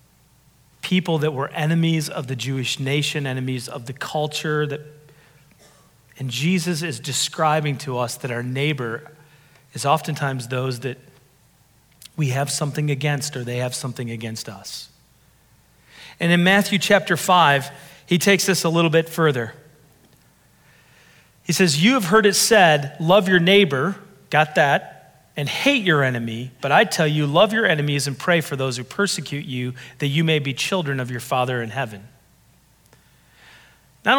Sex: male